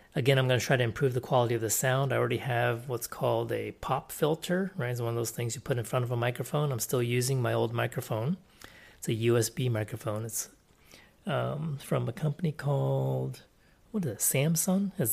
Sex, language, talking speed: male, English, 215 wpm